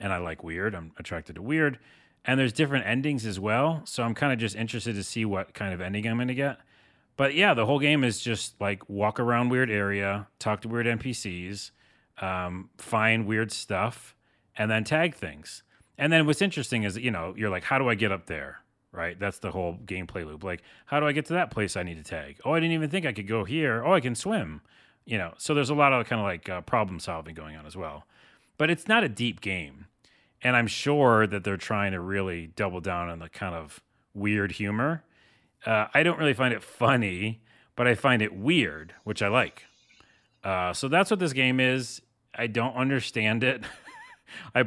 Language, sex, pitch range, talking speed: English, male, 100-135 Hz, 225 wpm